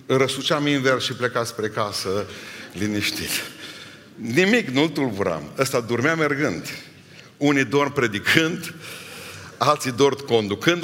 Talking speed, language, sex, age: 105 wpm, Romanian, male, 50-69